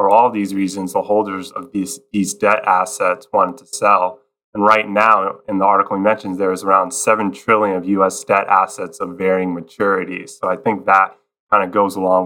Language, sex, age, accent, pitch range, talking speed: English, male, 20-39, American, 95-120 Hz, 205 wpm